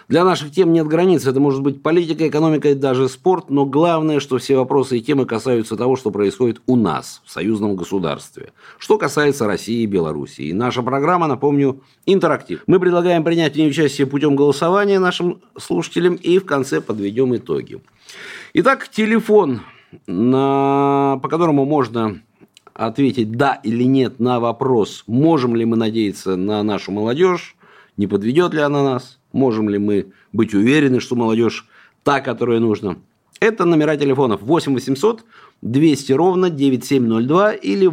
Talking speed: 150 wpm